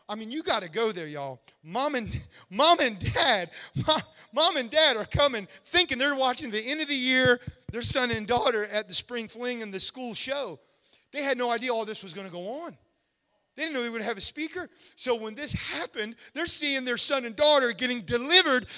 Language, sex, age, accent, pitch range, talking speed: English, male, 30-49, American, 180-245 Hz, 215 wpm